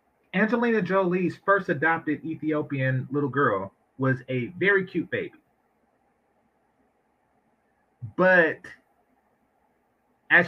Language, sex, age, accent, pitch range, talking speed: English, male, 30-49, American, 145-215 Hz, 80 wpm